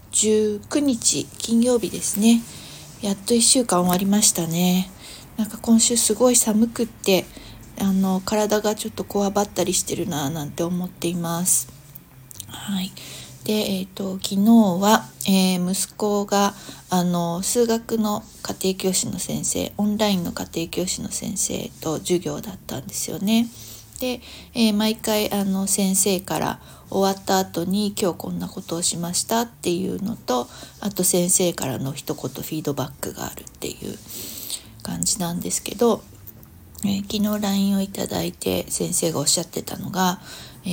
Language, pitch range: Japanese, 170-210 Hz